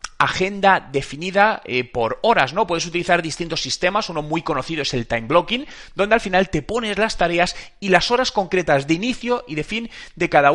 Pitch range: 140-195 Hz